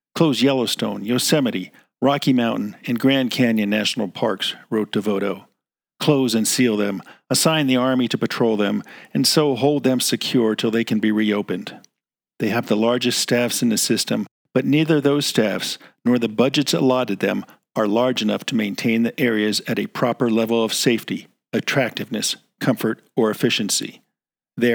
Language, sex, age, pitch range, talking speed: English, male, 50-69, 110-135 Hz, 160 wpm